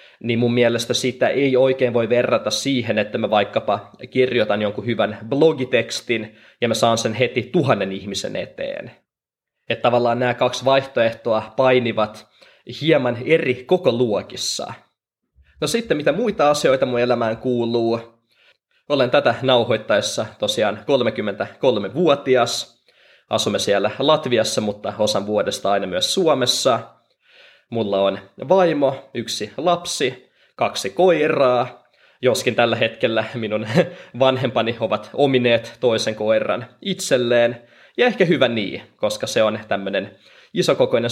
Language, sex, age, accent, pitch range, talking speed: Finnish, male, 20-39, native, 110-130 Hz, 120 wpm